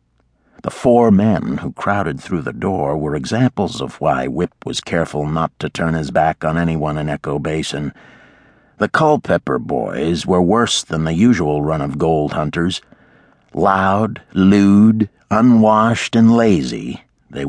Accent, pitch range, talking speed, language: American, 80-110 Hz, 150 wpm, English